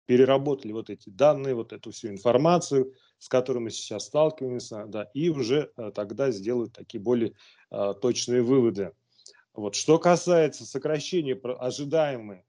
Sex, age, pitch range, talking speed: male, 30-49, 115-145 Hz, 120 wpm